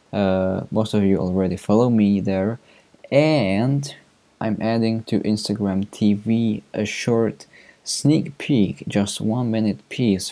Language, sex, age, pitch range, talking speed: English, male, 20-39, 95-115 Hz, 130 wpm